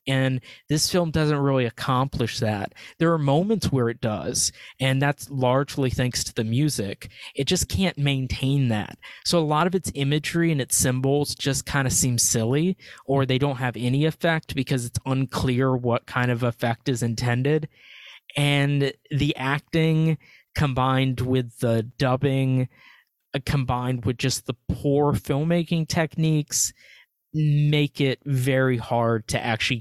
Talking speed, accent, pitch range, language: 150 wpm, American, 120-145 Hz, English